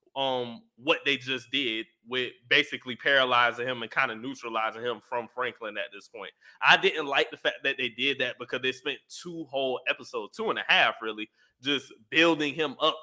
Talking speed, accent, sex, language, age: 200 wpm, American, male, English, 20-39